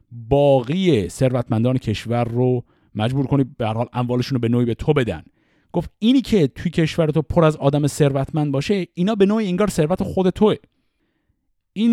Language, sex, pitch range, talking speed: Persian, male, 110-170 Hz, 170 wpm